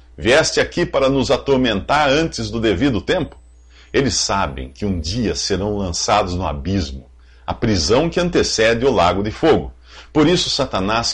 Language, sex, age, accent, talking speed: English, male, 50-69, Brazilian, 155 wpm